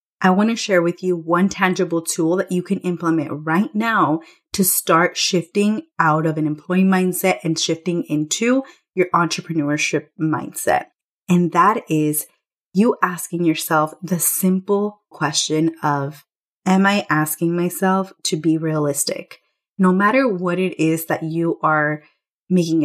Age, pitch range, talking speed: 30-49, 160-190 Hz, 145 wpm